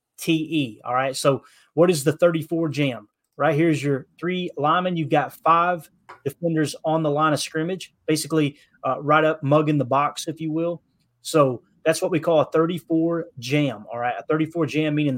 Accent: American